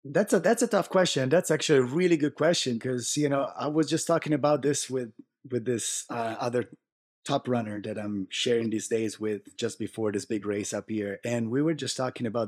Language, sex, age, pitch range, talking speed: English, male, 30-49, 115-145 Hz, 225 wpm